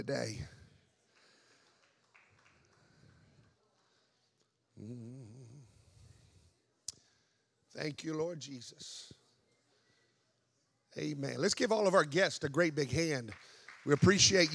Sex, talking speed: male, 75 wpm